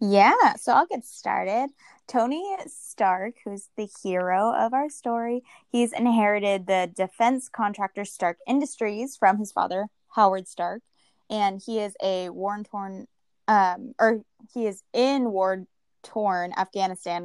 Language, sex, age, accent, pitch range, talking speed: English, female, 20-39, American, 185-230 Hz, 130 wpm